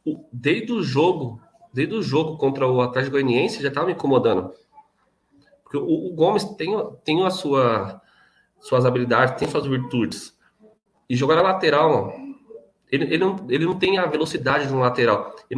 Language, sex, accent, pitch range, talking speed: Portuguese, male, Brazilian, 125-180 Hz, 170 wpm